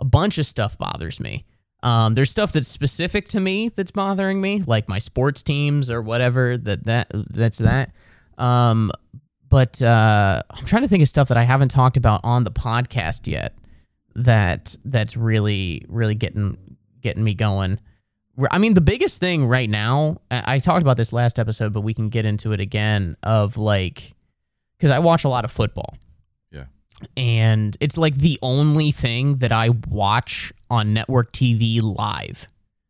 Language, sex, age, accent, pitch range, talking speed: English, male, 20-39, American, 110-150 Hz, 175 wpm